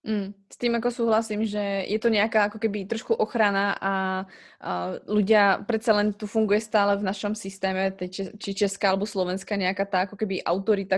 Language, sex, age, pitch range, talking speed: Slovak, female, 20-39, 190-210 Hz, 180 wpm